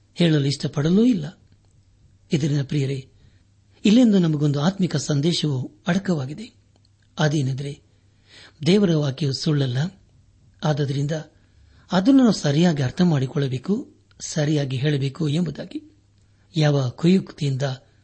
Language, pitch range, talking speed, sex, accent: Kannada, 105-165 Hz, 75 wpm, male, native